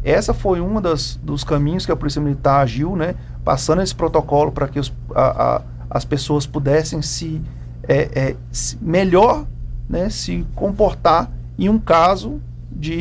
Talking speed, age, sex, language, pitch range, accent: 125 wpm, 40-59, male, Portuguese, 105-155 Hz, Brazilian